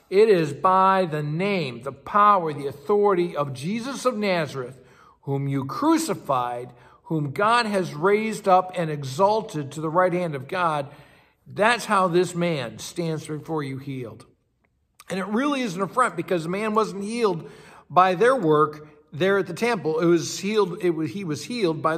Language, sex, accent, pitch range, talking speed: English, male, American, 155-210 Hz, 175 wpm